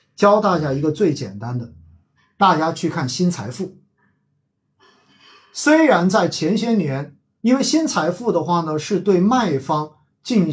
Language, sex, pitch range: Chinese, male, 140-195 Hz